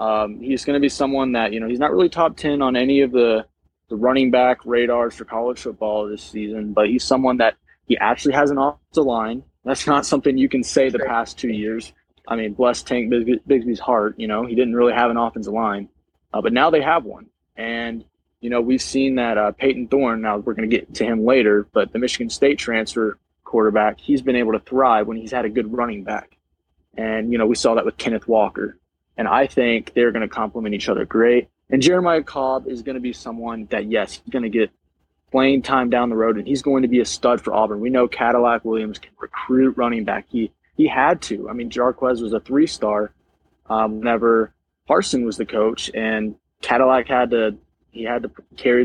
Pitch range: 110-130 Hz